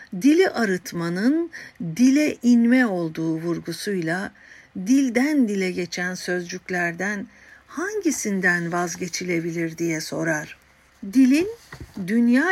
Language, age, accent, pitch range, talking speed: Turkish, 60-79, native, 180-265 Hz, 75 wpm